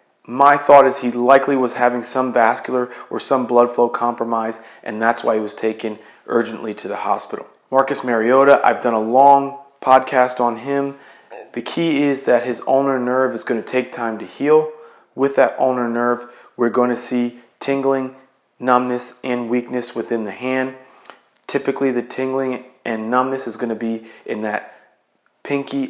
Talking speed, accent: 170 wpm, American